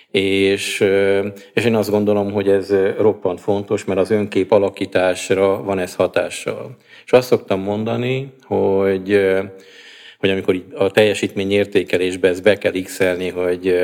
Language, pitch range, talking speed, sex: Hungarian, 95-100 Hz, 130 wpm, male